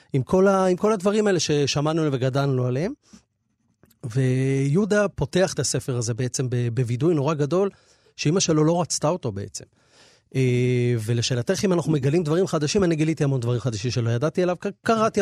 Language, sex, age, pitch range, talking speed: Hebrew, male, 30-49, 125-165 Hz, 160 wpm